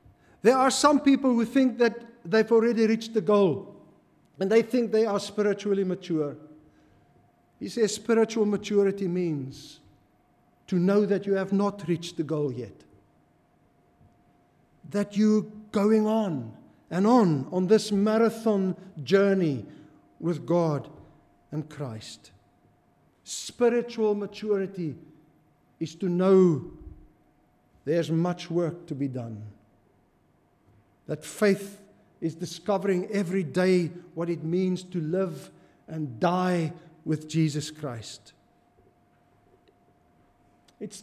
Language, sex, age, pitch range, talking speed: English, male, 50-69, 155-220 Hz, 110 wpm